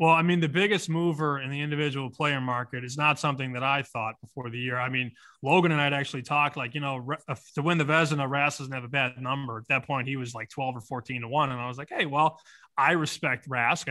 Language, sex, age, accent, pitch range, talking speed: English, male, 20-39, American, 135-160 Hz, 265 wpm